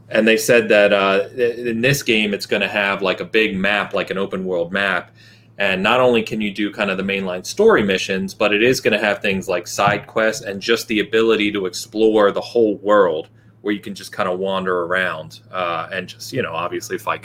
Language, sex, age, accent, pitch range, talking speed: English, male, 30-49, American, 95-115 Hz, 235 wpm